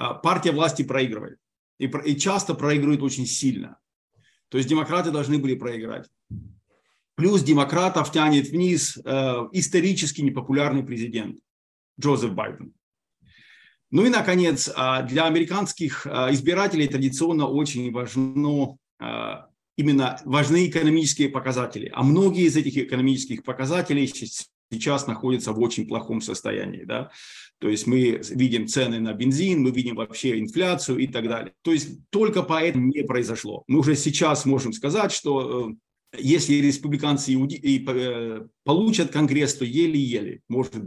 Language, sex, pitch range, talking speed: Russian, male, 130-170 Hz, 115 wpm